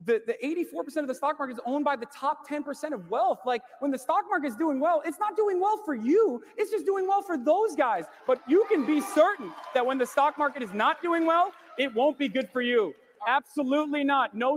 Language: English